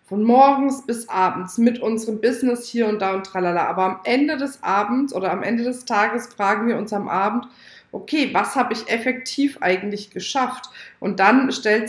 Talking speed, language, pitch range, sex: 185 wpm, German, 195-245 Hz, female